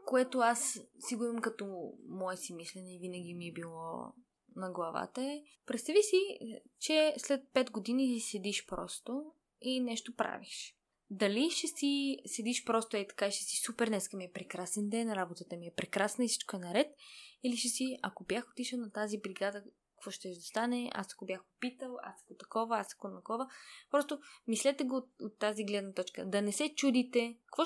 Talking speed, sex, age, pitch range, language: 190 wpm, female, 20-39, 205-265 Hz, Bulgarian